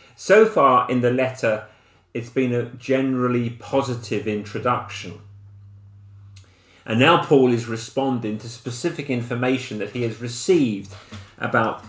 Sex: male